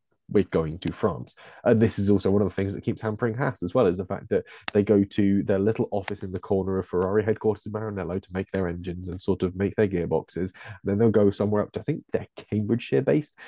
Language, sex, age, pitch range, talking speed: English, male, 20-39, 90-110 Hz, 260 wpm